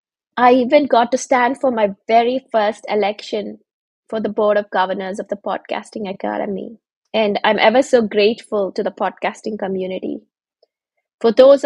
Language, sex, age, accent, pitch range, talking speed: English, female, 20-39, Indian, 200-230 Hz, 155 wpm